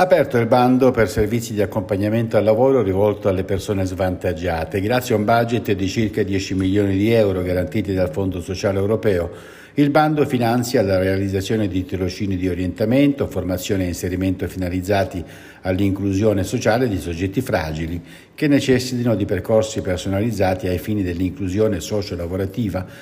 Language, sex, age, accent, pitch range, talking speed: Italian, male, 60-79, native, 95-120 Hz, 145 wpm